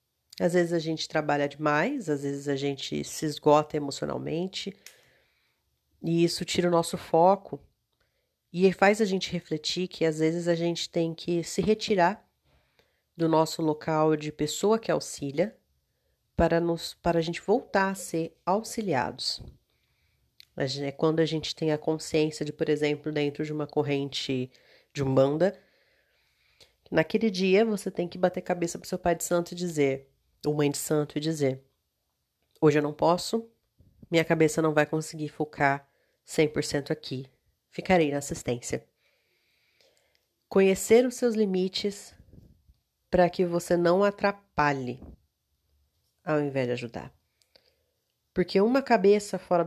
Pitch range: 150-180 Hz